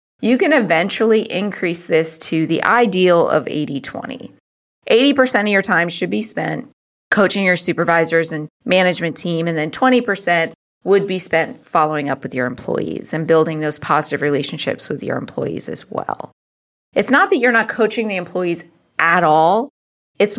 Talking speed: 160 wpm